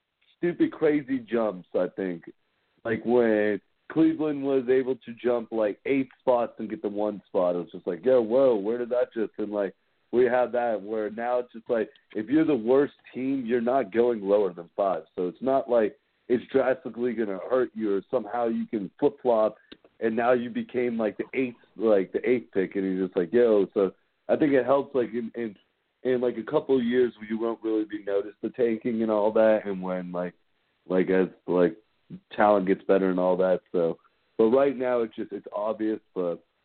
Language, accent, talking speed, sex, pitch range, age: English, American, 210 wpm, male, 100-125 Hz, 40-59